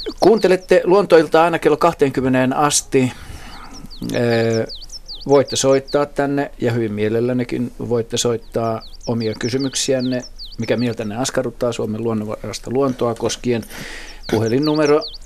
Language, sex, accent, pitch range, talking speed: Finnish, male, native, 110-130 Hz, 100 wpm